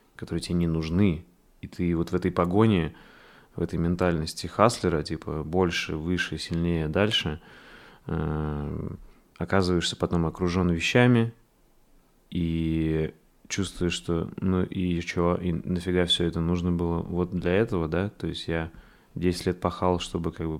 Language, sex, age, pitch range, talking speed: Russian, male, 20-39, 80-95 Hz, 140 wpm